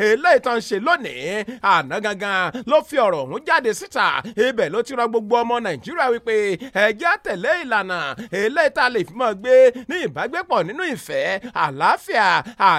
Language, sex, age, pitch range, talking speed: English, male, 30-49, 215-330 Hz, 185 wpm